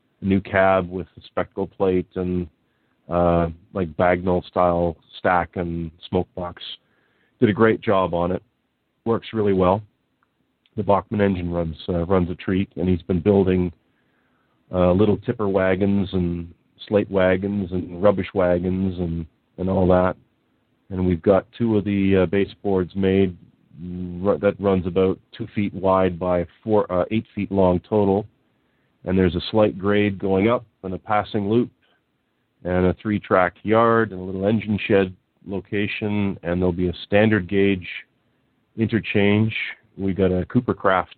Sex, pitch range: male, 90-105 Hz